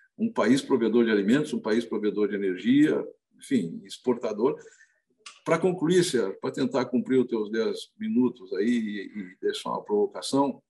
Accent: Brazilian